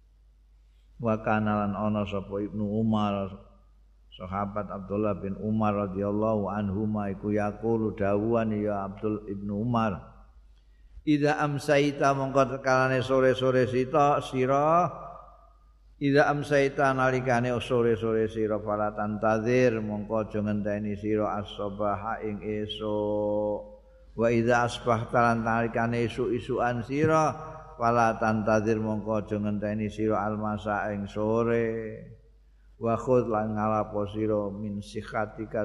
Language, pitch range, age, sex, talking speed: Indonesian, 105-120 Hz, 50-69, male, 100 wpm